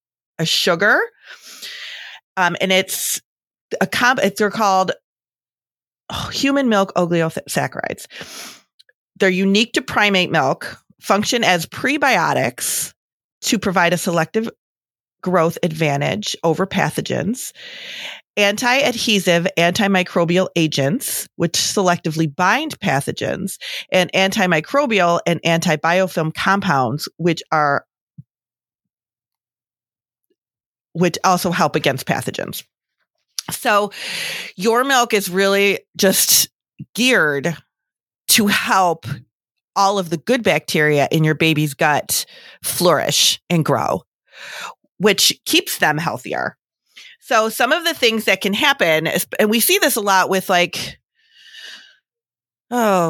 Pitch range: 165-210 Hz